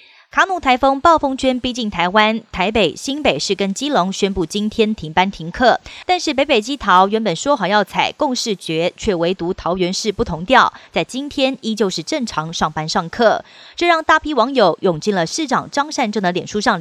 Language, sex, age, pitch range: Chinese, female, 30-49, 185-265 Hz